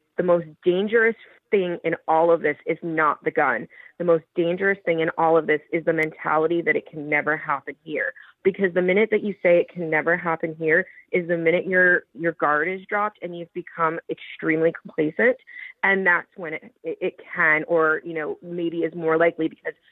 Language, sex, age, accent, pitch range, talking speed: English, female, 30-49, American, 160-185 Hz, 200 wpm